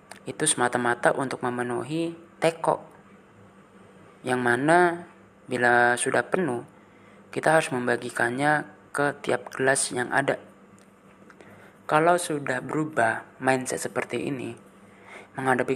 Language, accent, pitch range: Indonesian, native, 120-160 Hz